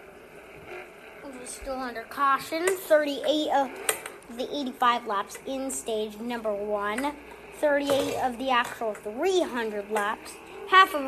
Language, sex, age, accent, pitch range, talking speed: English, female, 20-39, American, 245-400 Hz, 115 wpm